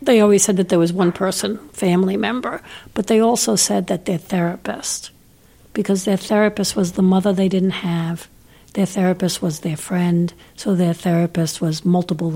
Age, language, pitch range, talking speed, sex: 60-79, English, 175-215 Hz, 175 wpm, female